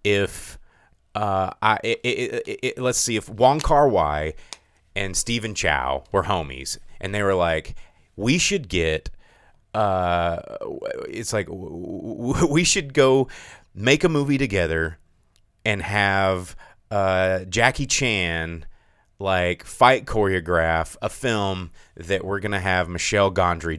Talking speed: 135 wpm